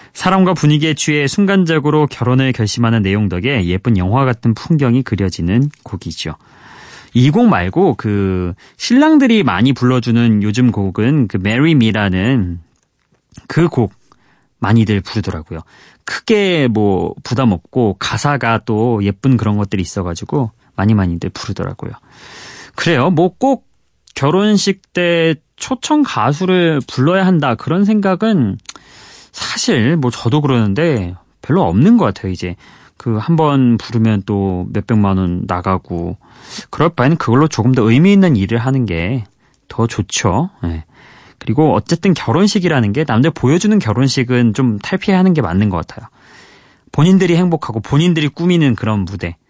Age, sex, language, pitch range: 30-49, male, Korean, 105-160 Hz